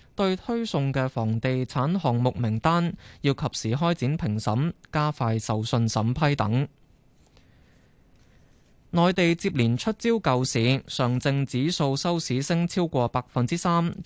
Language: Chinese